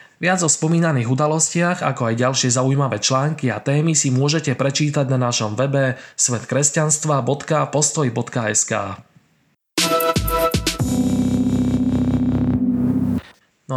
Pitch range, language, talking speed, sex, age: 120-150 Hz, Slovak, 85 wpm, male, 20-39